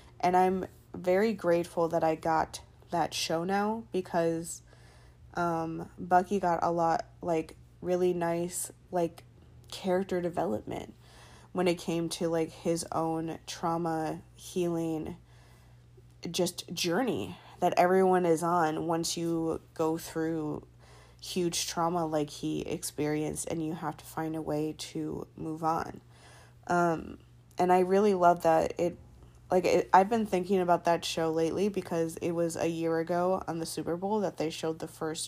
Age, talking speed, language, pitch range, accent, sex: 20-39, 145 wpm, English, 160-180 Hz, American, female